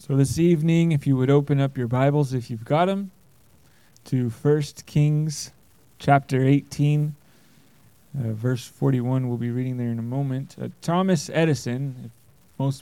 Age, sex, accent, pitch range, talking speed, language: 20-39, male, American, 135-170 Hz, 160 wpm, English